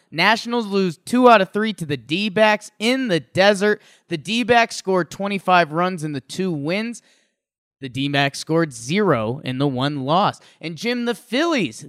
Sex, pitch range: male, 155-215 Hz